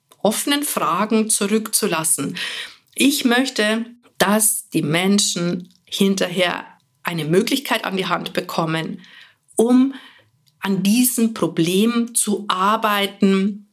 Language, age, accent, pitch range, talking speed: German, 50-69, German, 180-220 Hz, 90 wpm